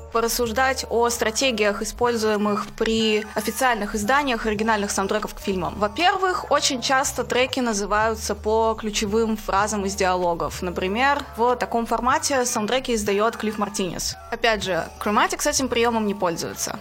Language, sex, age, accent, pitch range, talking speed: Russian, female, 20-39, native, 200-255 Hz, 130 wpm